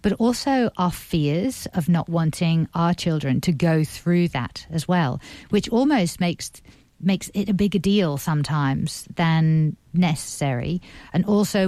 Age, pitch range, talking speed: 50-69, 150-180 Hz, 145 wpm